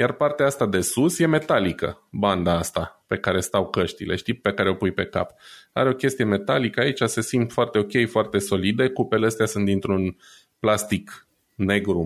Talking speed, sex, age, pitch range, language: 185 wpm, male, 20-39, 95-140 Hz, Romanian